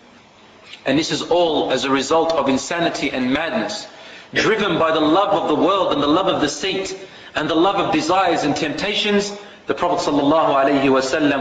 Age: 30-49